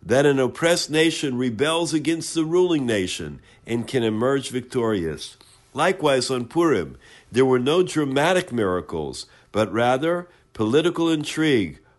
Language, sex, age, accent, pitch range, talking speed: English, male, 50-69, American, 110-155 Hz, 125 wpm